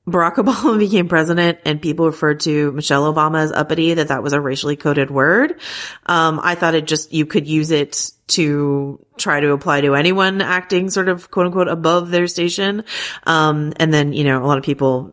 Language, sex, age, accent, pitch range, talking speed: English, female, 30-49, American, 145-175 Hz, 200 wpm